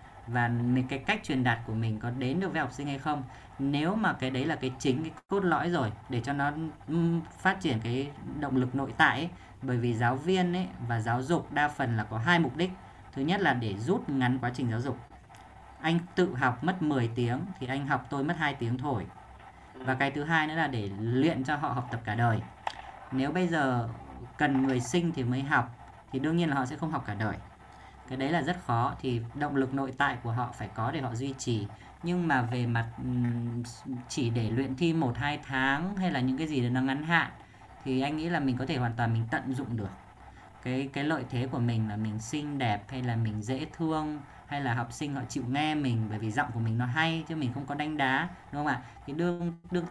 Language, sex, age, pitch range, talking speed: Vietnamese, female, 20-39, 120-155 Hz, 245 wpm